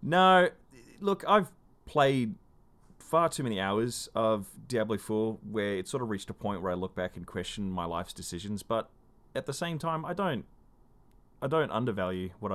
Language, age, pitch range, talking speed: English, 30-49, 95-130 Hz, 180 wpm